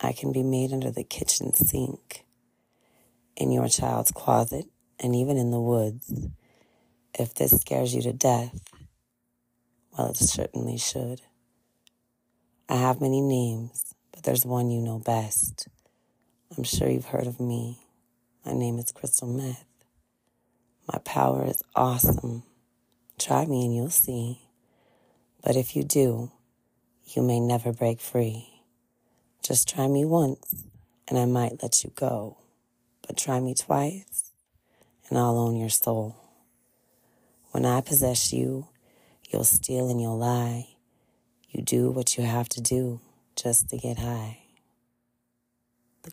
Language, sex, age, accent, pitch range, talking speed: English, female, 30-49, American, 115-125 Hz, 140 wpm